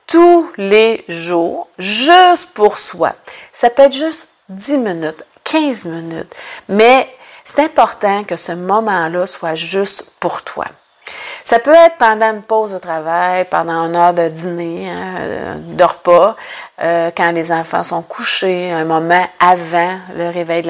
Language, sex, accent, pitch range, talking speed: French, female, Canadian, 170-245 Hz, 150 wpm